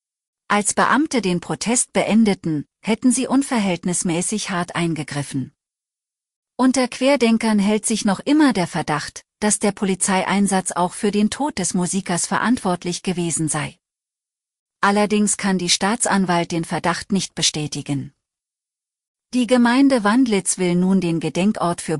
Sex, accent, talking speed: female, German, 125 wpm